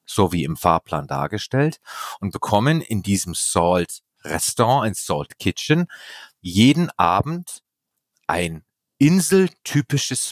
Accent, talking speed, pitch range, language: German, 95 wpm, 95-135 Hz, German